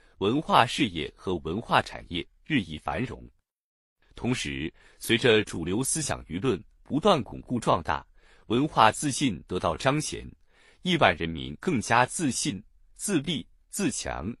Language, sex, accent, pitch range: Chinese, male, native, 85-145 Hz